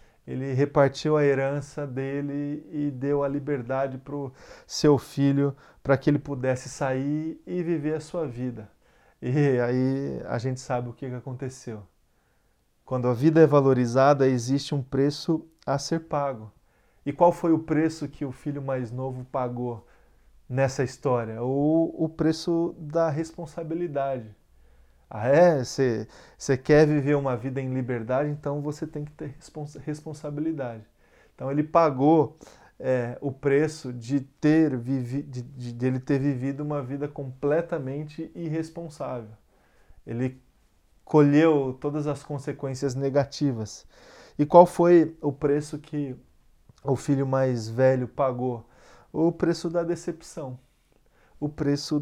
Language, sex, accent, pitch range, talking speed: Portuguese, male, Brazilian, 130-150 Hz, 135 wpm